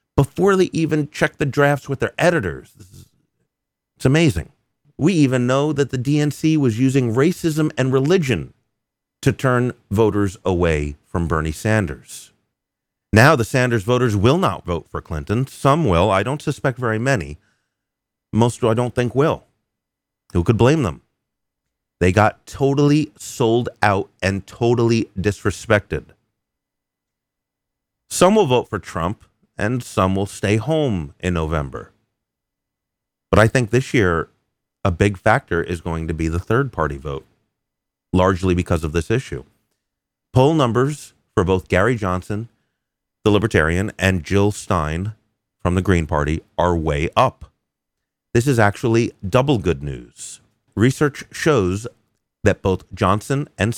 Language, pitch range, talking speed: English, 90-130 Hz, 140 wpm